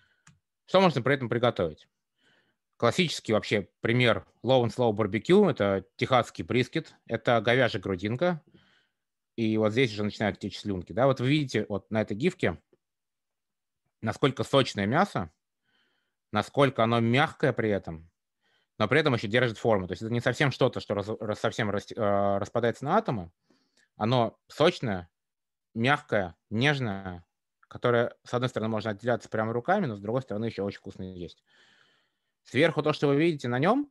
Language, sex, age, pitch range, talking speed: Russian, male, 20-39, 100-130 Hz, 145 wpm